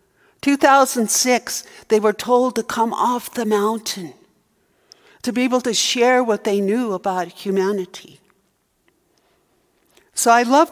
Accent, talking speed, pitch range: American, 125 wpm, 180-245 Hz